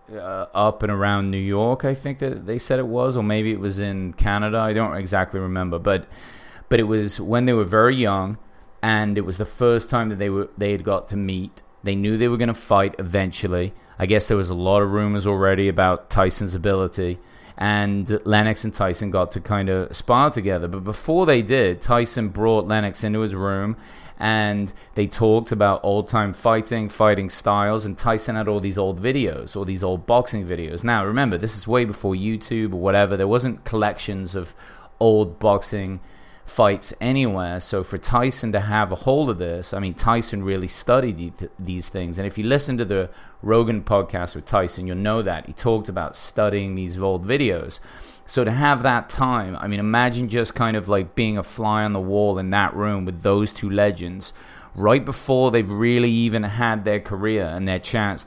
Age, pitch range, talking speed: 30-49, 95-115 Hz, 200 wpm